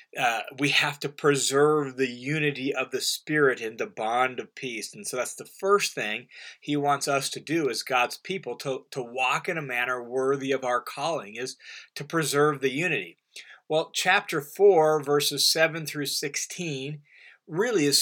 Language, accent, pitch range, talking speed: English, American, 140-190 Hz, 175 wpm